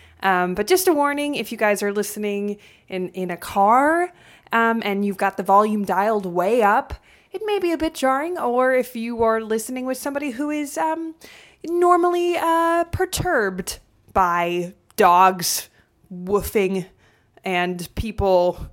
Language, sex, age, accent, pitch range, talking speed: English, female, 20-39, American, 185-245 Hz, 150 wpm